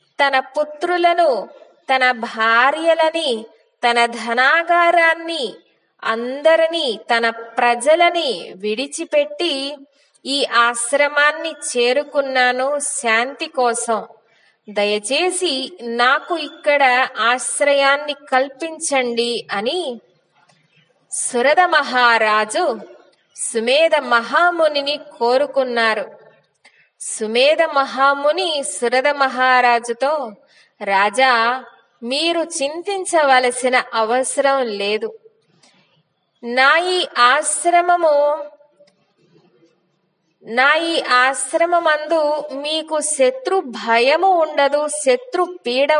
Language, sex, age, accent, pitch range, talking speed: English, female, 20-39, Indian, 235-310 Hz, 60 wpm